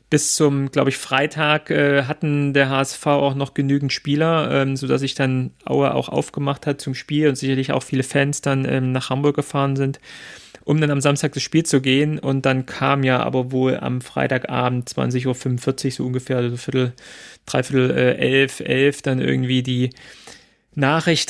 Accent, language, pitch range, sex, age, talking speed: German, German, 130-145 Hz, male, 30-49, 185 wpm